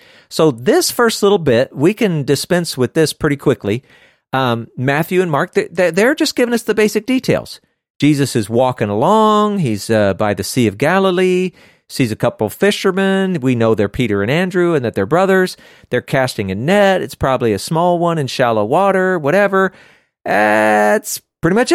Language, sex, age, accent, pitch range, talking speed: English, male, 40-59, American, 120-185 Hz, 180 wpm